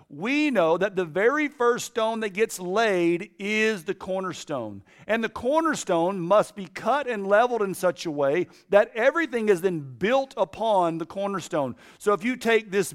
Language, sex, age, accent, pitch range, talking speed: English, male, 50-69, American, 180-240 Hz, 175 wpm